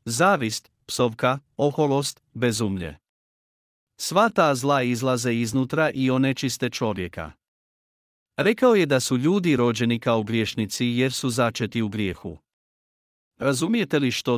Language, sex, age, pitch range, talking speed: Croatian, male, 50-69, 115-145 Hz, 115 wpm